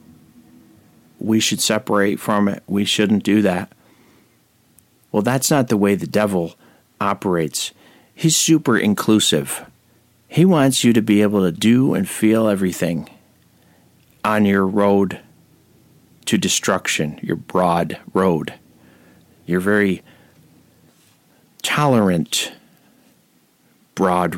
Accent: American